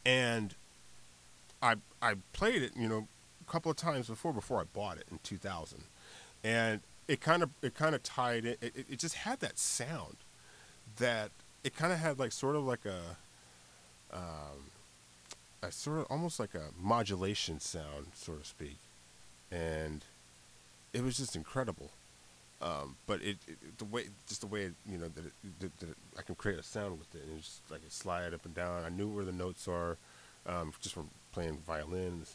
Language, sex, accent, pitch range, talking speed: English, male, American, 75-110 Hz, 190 wpm